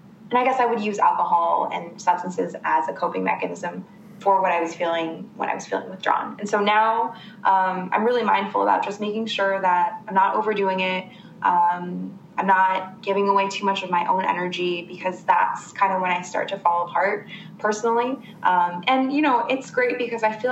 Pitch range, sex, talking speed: 180-215 Hz, female, 205 wpm